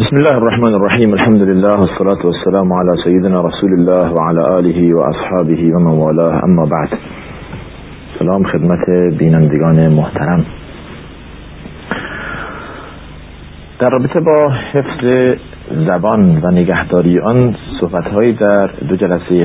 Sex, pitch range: male, 80-105 Hz